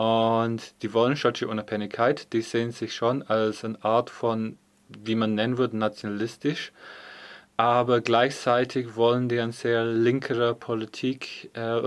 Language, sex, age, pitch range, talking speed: German, male, 30-49, 110-120 Hz, 135 wpm